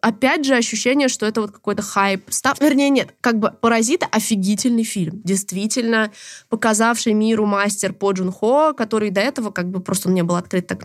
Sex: female